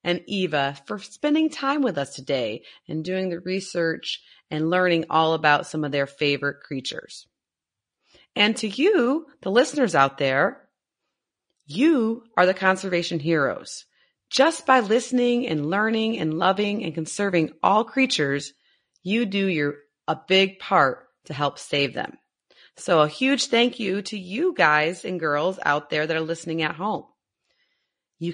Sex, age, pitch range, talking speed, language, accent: female, 30-49, 150-230 Hz, 150 wpm, English, American